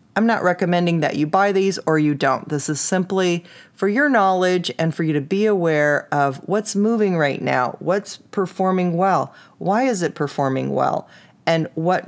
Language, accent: English, American